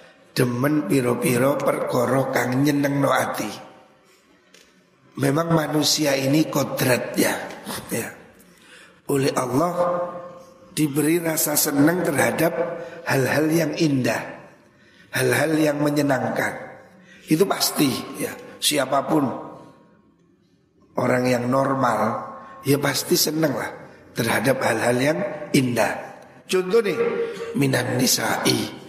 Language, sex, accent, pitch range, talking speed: Indonesian, male, native, 130-170 Hz, 85 wpm